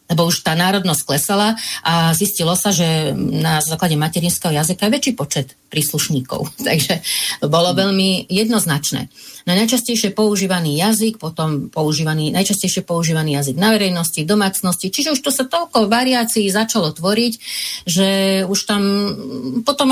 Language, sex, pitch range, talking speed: Slovak, female, 160-205 Hz, 135 wpm